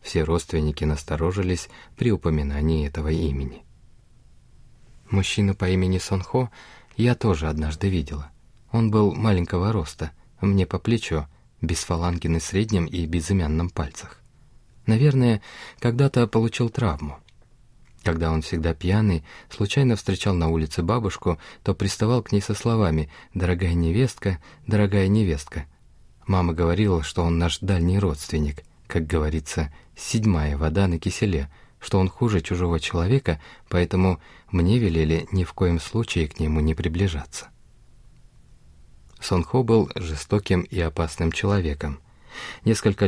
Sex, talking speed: male, 125 wpm